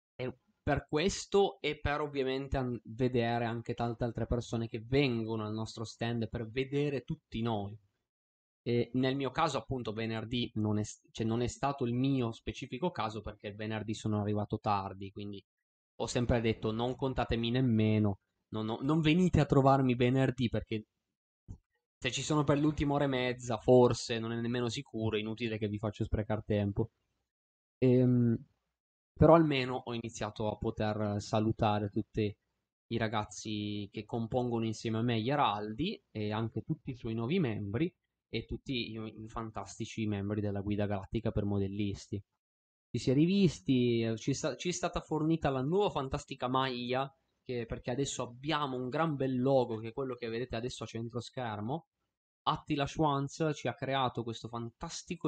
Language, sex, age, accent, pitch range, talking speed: Italian, male, 20-39, native, 110-135 Hz, 160 wpm